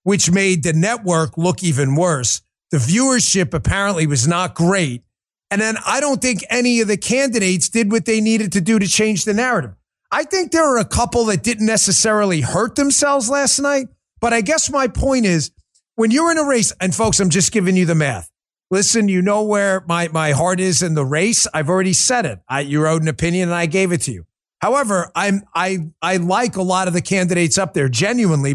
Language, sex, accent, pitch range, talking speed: English, male, American, 165-225 Hz, 215 wpm